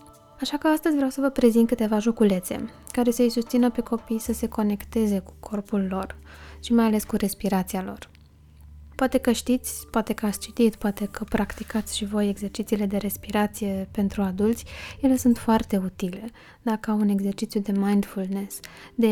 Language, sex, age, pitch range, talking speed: Romanian, female, 20-39, 195-225 Hz, 170 wpm